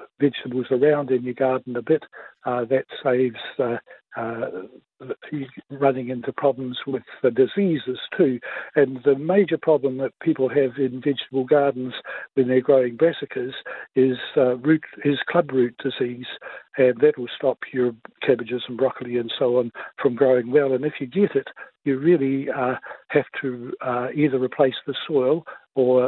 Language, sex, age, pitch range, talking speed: English, male, 60-79, 125-135 Hz, 160 wpm